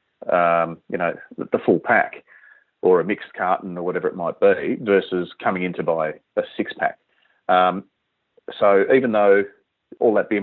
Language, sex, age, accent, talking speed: English, male, 30-49, Australian, 175 wpm